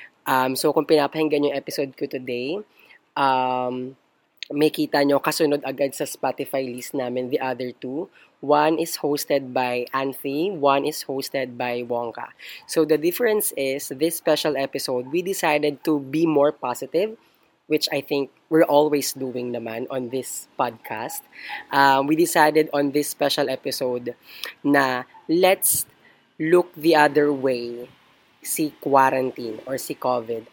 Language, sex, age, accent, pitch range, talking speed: Filipino, female, 20-39, native, 125-155 Hz, 140 wpm